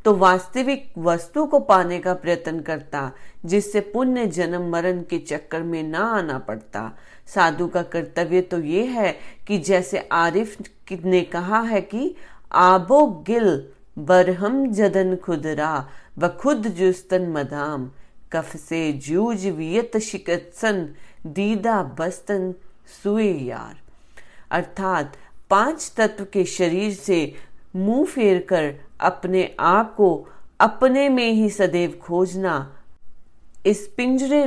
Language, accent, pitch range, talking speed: Hindi, native, 170-210 Hz, 115 wpm